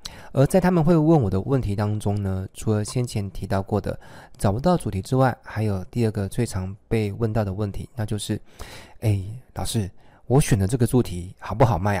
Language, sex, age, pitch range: Chinese, male, 20-39, 100-125 Hz